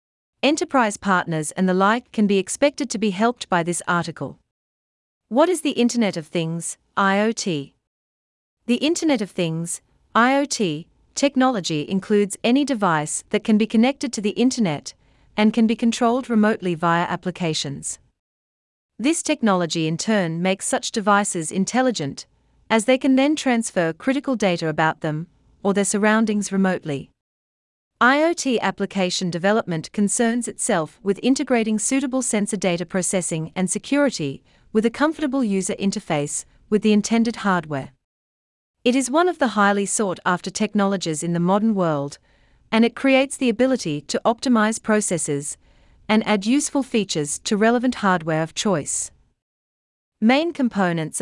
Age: 40-59